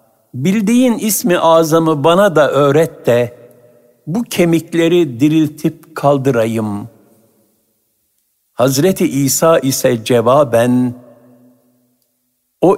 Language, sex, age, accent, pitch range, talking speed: Turkish, male, 60-79, native, 120-165 Hz, 80 wpm